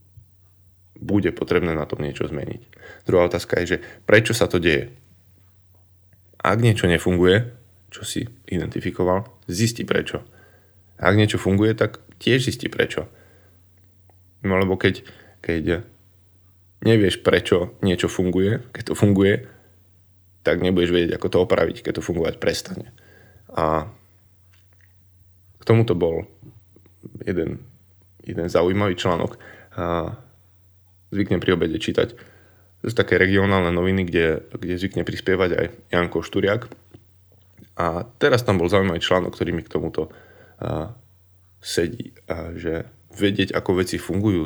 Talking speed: 125 wpm